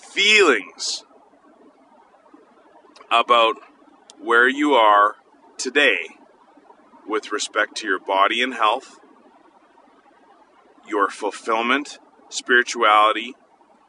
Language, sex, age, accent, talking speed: English, male, 30-49, American, 70 wpm